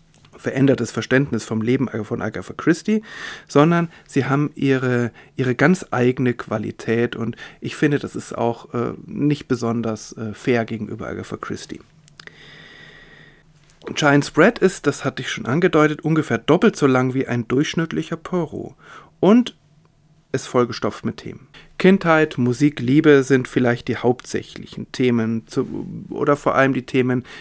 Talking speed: 140 wpm